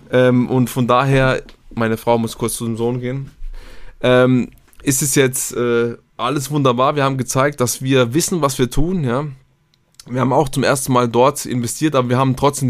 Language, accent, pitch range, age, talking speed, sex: German, German, 125-150 Hz, 20-39, 195 wpm, male